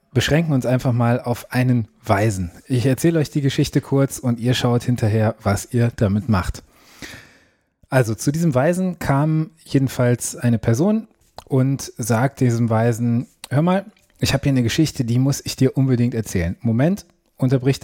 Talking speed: 160 wpm